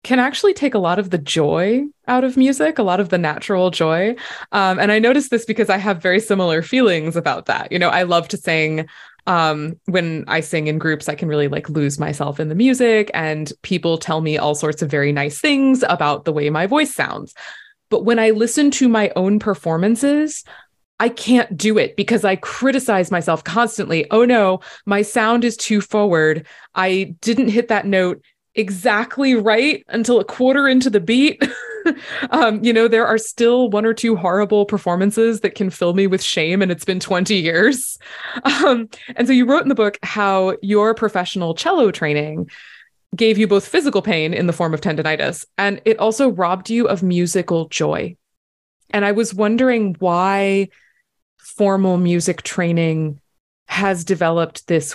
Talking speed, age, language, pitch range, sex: 185 wpm, 20-39, English, 170-230 Hz, female